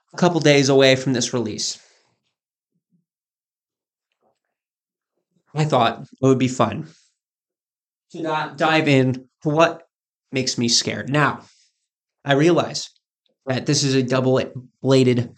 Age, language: 20-39, English